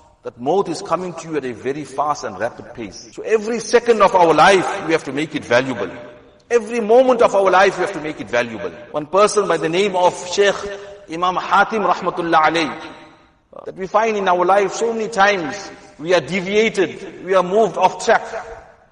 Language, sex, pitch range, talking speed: English, male, 180-215 Hz, 205 wpm